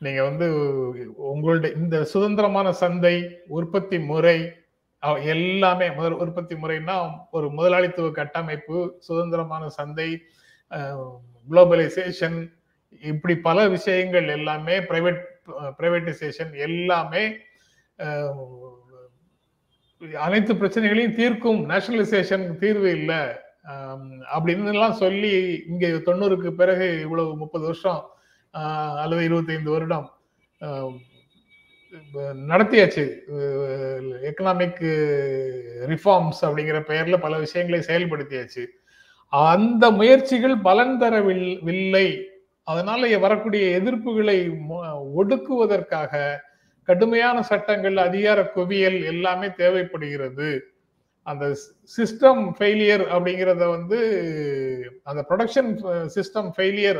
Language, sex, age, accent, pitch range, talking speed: Tamil, male, 30-49, native, 155-195 Hz, 80 wpm